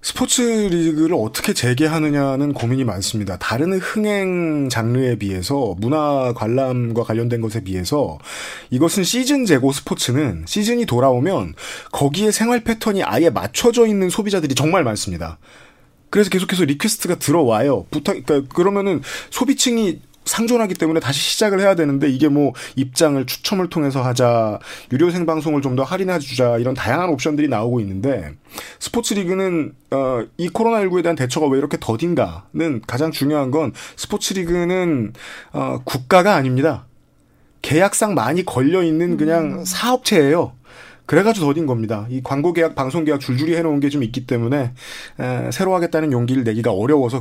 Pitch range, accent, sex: 125-185 Hz, native, male